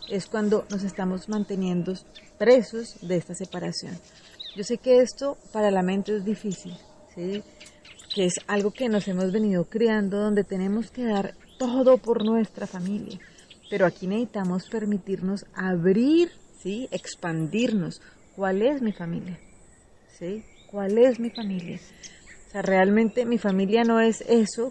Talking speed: 145 wpm